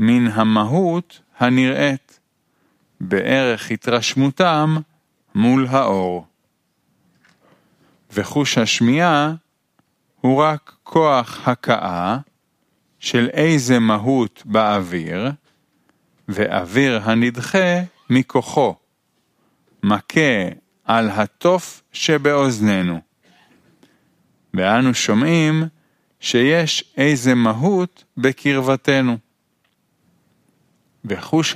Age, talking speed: 40-59, 60 wpm